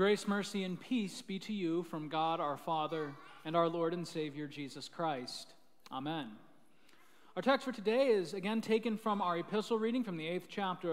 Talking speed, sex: 185 wpm, male